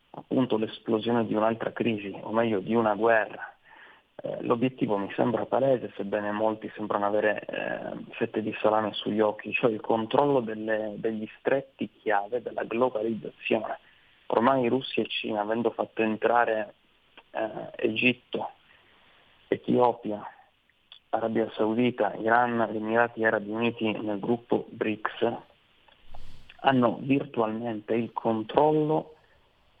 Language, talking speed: Italian, 115 wpm